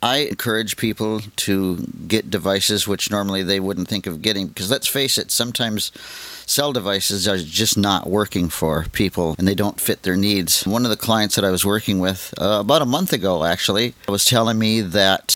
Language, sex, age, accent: English, male, 50-69, American